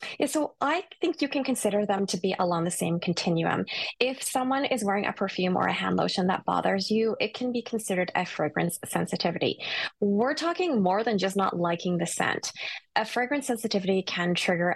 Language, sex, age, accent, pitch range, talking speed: English, female, 20-39, American, 180-220 Hz, 195 wpm